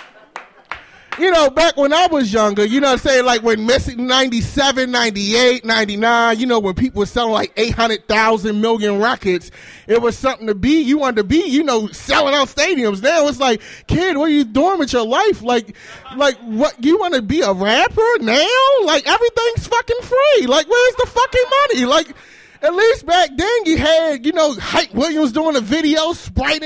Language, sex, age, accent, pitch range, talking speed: English, male, 30-49, American, 210-310 Hz, 200 wpm